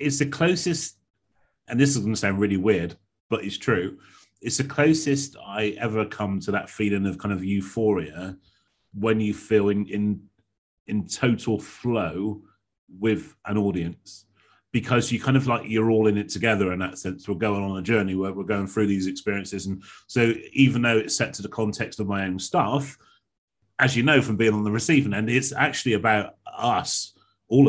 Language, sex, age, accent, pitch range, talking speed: English, male, 30-49, British, 100-120 Hz, 190 wpm